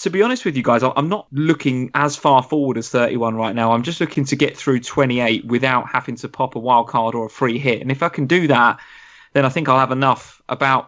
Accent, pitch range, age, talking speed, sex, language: British, 115-135 Hz, 20-39, 260 wpm, male, English